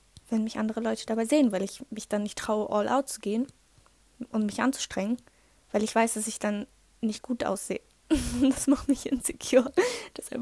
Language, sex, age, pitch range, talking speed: German, female, 10-29, 215-260 Hz, 190 wpm